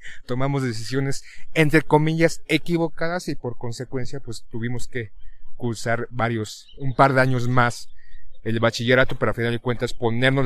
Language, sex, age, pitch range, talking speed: Spanish, male, 30-49, 115-145 Hz, 150 wpm